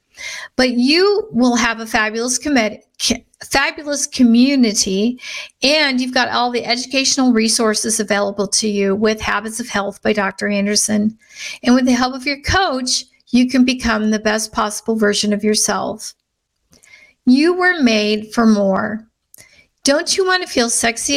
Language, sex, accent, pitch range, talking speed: English, female, American, 215-270 Hz, 155 wpm